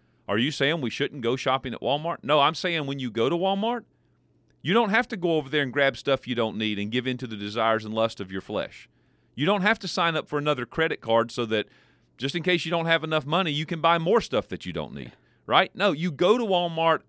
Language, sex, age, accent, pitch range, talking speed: English, male, 40-59, American, 115-170 Hz, 265 wpm